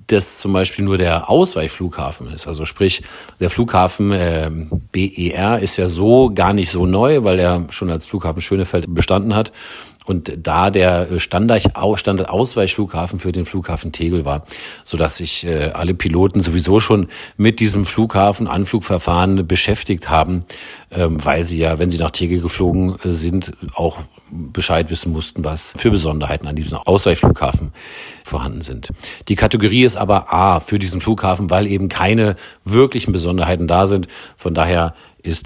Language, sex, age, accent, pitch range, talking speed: German, male, 40-59, German, 85-100 Hz, 150 wpm